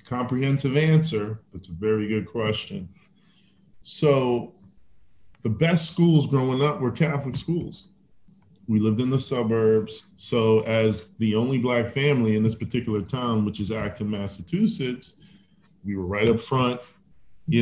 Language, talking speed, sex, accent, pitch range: English, 140 wpm, male, American, 110-155 Hz